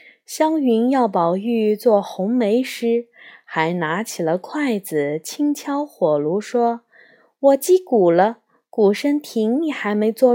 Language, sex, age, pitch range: Chinese, female, 20-39, 175-245 Hz